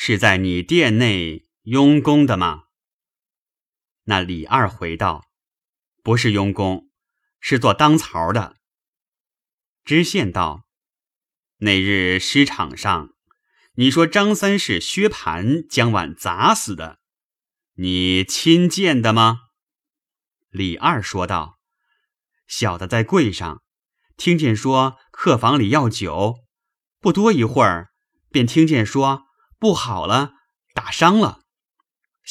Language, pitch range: Chinese, 100-160 Hz